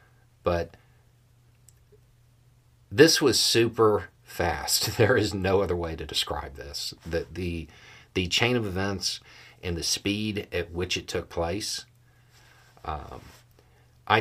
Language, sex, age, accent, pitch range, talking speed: English, male, 40-59, American, 85-120 Hz, 120 wpm